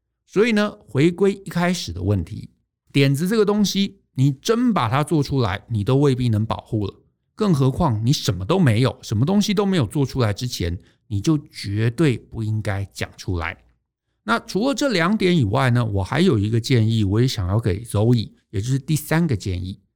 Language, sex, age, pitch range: Chinese, male, 50-69, 110-175 Hz